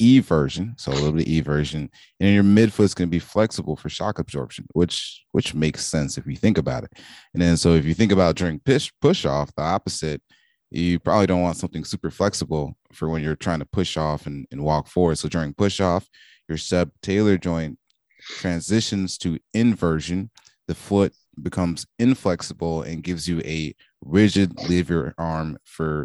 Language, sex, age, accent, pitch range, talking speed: English, male, 20-39, American, 80-90 Hz, 185 wpm